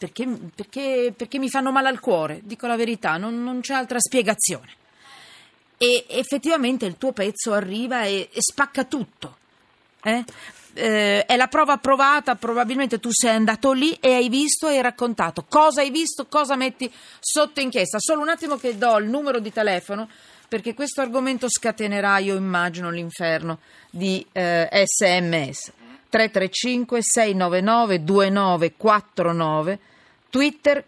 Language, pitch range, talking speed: Italian, 190-260 Hz, 135 wpm